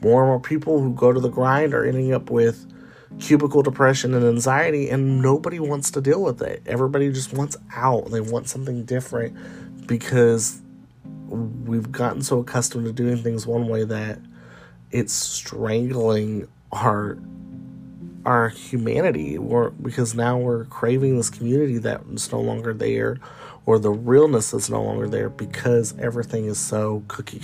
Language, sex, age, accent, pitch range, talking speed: English, male, 30-49, American, 110-130 Hz, 155 wpm